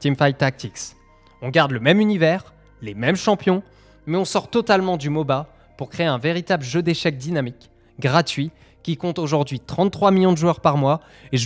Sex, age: male, 20-39